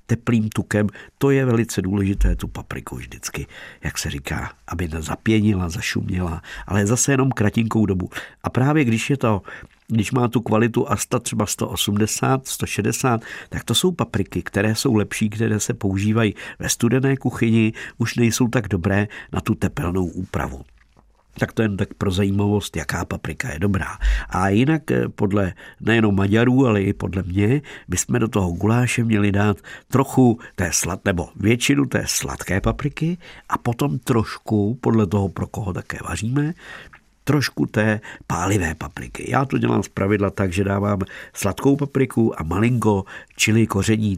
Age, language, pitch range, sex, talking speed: 50-69, Czech, 95-115 Hz, male, 155 wpm